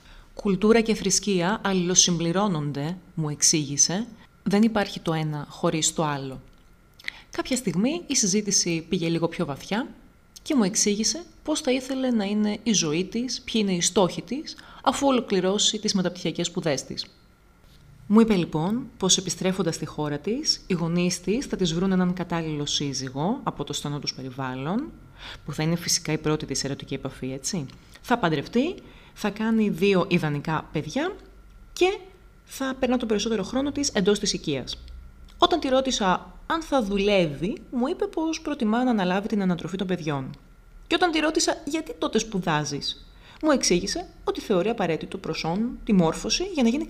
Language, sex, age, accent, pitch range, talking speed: Greek, female, 30-49, native, 160-235 Hz, 160 wpm